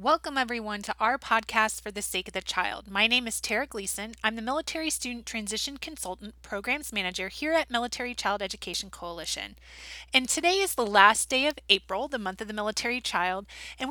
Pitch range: 210-265 Hz